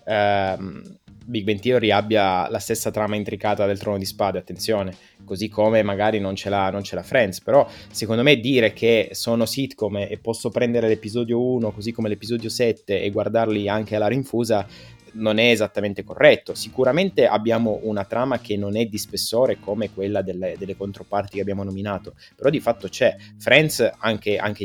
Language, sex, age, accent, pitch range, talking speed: Italian, male, 20-39, native, 105-120 Hz, 175 wpm